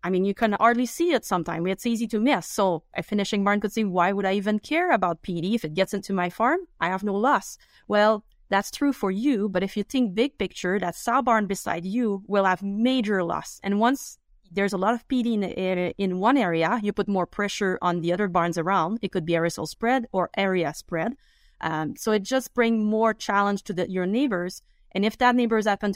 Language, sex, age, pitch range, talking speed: English, female, 30-49, 180-220 Hz, 230 wpm